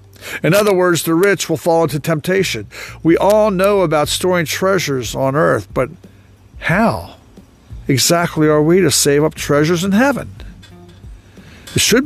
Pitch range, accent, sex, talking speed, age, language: 115-195 Hz, American, male, 150 wpm, 60-79, English